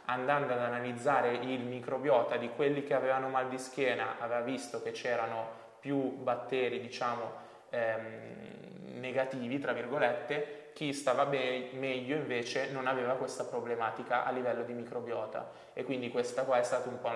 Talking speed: 150 wpm